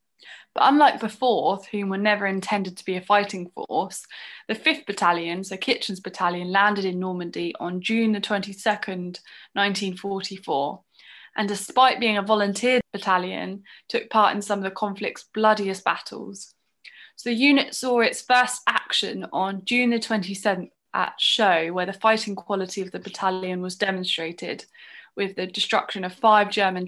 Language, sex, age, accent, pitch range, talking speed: English, female, 20-39, British, 185-220 Hz, 155 wpm